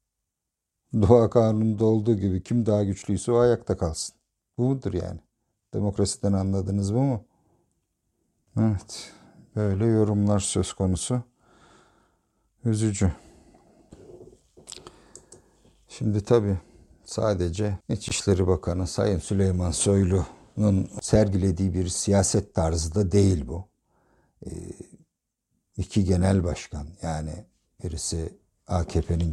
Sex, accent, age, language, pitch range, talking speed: male, native, 50-69, Turkish, 85-100 Hz, 90 wpm